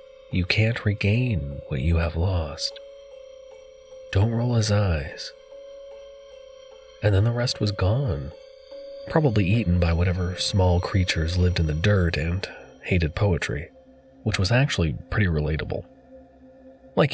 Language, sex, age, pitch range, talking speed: English, male, 30-49, 85-120 Hz, 125 wpm